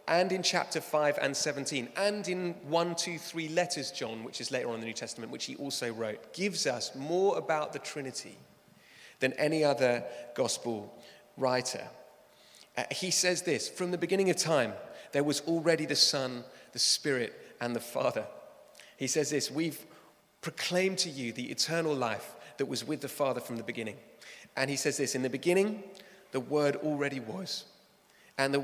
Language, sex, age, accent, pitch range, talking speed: English, male, 30-49, British, 135-175 Hz, 180 wpm